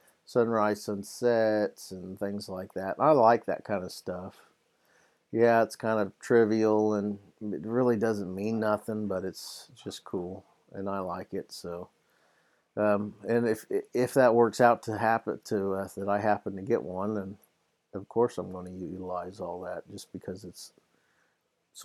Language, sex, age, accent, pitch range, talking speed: English, male, 50-69, American, 95-120 Hz, 170 wpm